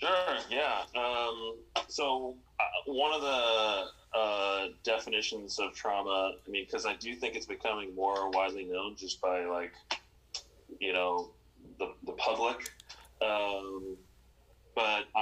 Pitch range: 90-130 Hz